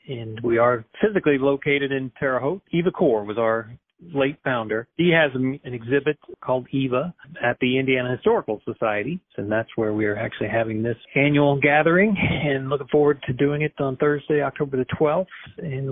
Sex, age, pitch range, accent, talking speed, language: male, 40-59, 125-150 Hz, American, 175 wpm, English